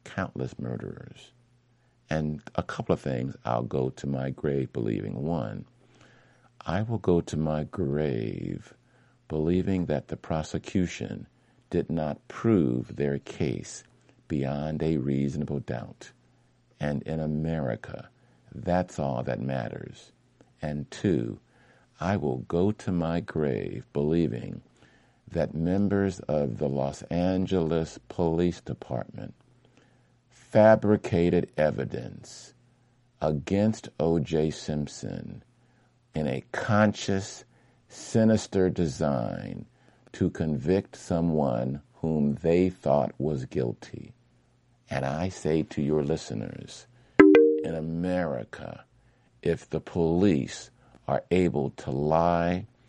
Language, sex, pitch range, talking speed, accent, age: English, male, 75-95 Hz, 100 wpm, American, 50-69